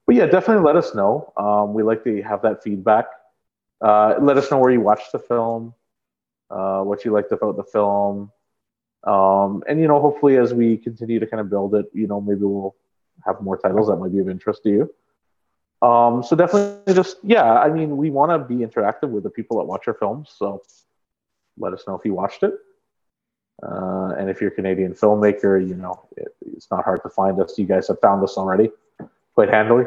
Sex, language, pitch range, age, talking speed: male, English, 95-120 Hz, 30-49, 215 wpm